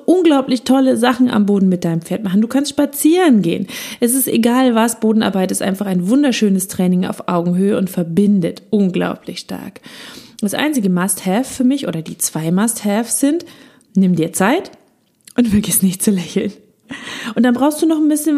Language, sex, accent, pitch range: German, female, German, 190-255 Hz